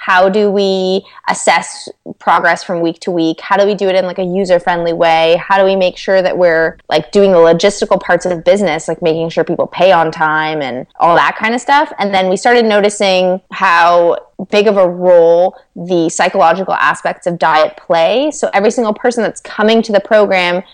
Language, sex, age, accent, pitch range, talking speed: English, female, 20-39, American, 170-205 Hz, 210 wpm